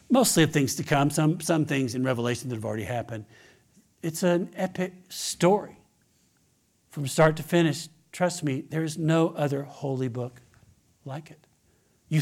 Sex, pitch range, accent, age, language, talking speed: male, 125-160 Hz, American, 60-79, English, 160 wpm